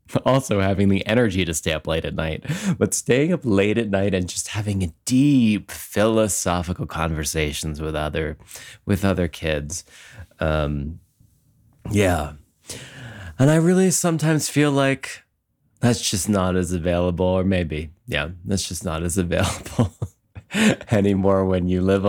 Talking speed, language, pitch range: 145 wpm, English, 90-120 Hz